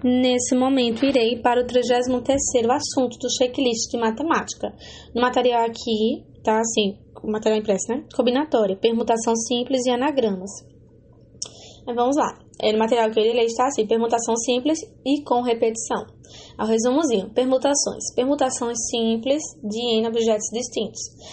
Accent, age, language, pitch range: Brazilian, 10-29, English, 220-255 Hz